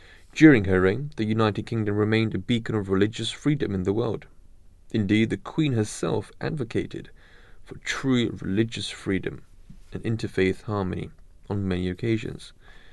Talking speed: 140 wpm